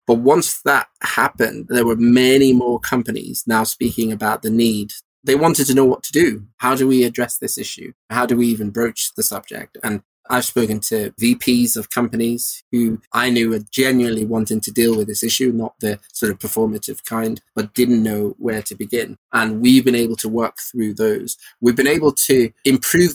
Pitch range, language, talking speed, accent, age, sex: 110-130 Hz, English, 200 wpm, British, 20-39, male